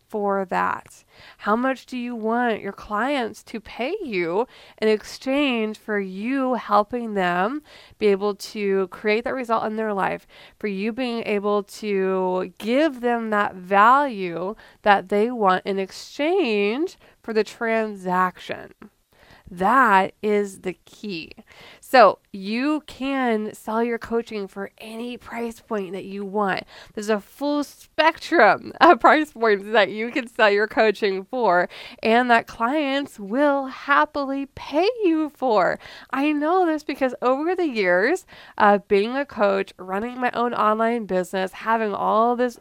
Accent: American